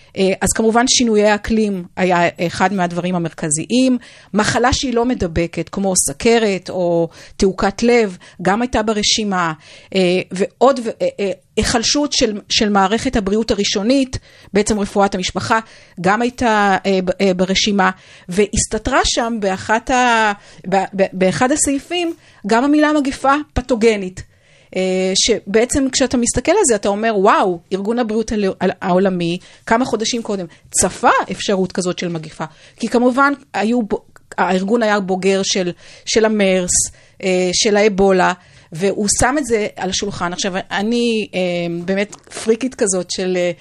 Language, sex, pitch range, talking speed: Hebrew, female, 185-235 Hz, 115 wpm